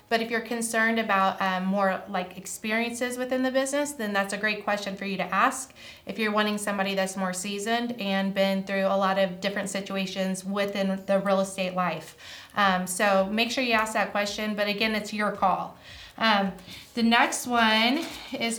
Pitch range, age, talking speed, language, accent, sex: 195-230 Hz, 20-39, 190 wpm, English, American, female